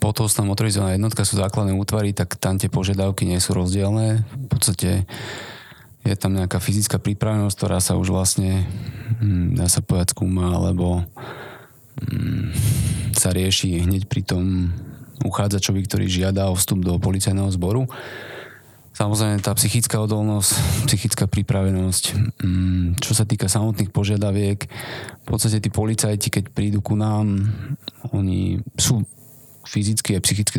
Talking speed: 130 wpm